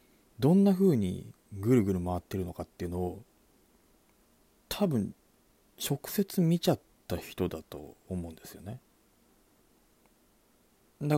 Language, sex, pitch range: Japanese, male, 90-120 Hz